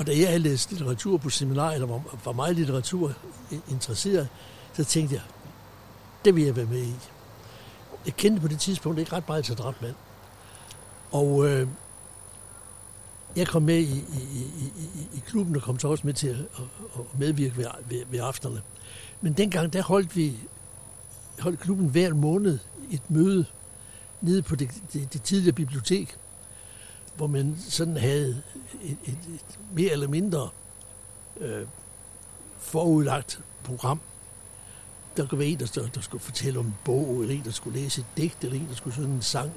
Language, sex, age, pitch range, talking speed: Danish, male, 60-79, 110-150 Hz, 165 wpm